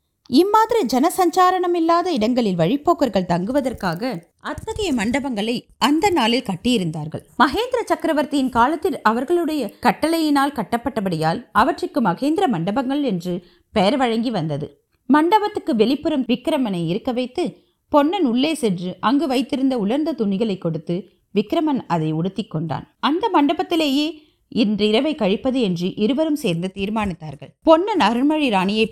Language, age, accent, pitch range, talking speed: Tamil, 30-49, native, 195-300 Hz, 110 wpm